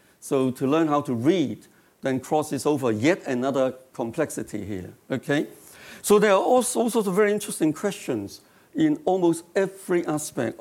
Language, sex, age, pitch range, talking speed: English, male, 60-79, 125-180 Hz, 155 wpm